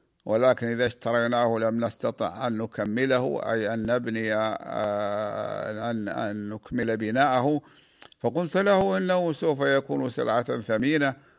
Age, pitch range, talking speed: 50-69, 115-125 Hz, 110 wpm